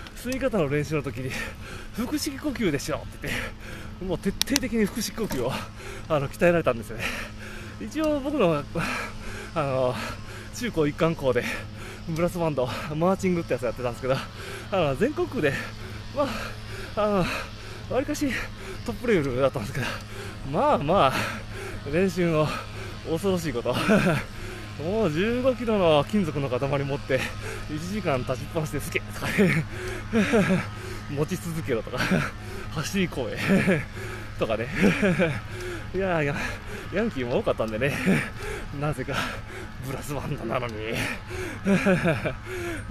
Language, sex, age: Japanese, male, 20-39